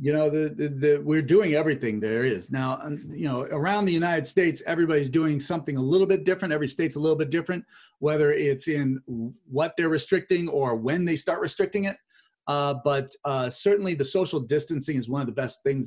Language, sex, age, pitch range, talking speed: English, male, 40-59, 135-170 Hz, 210 wpm